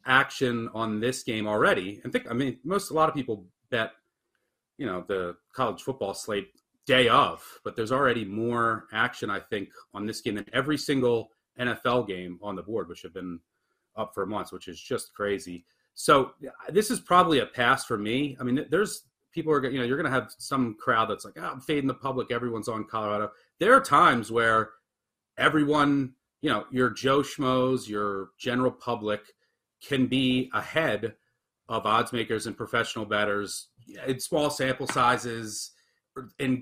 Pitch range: 105-140 Hz